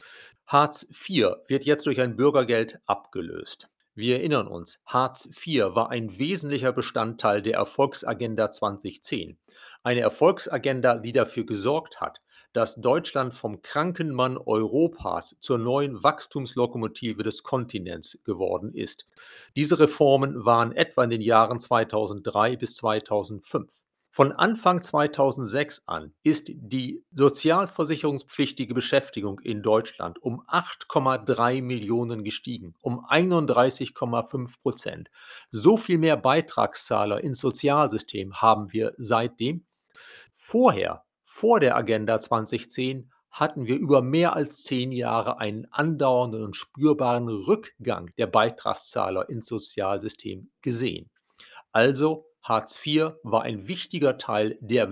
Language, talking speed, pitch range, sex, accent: German, 115 wpm, 115-150 Hz, male, German